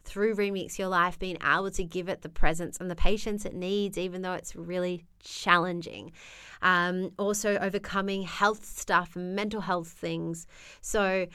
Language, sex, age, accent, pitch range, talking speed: English, female, 20-39, Australian, 170-195 Hz, 165 wpm